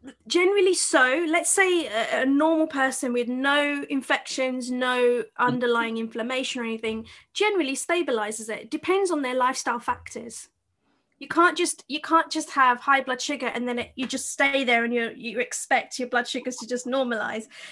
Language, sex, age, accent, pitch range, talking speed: English, female, 30-49, British, 235-285 Hz, 170 wpm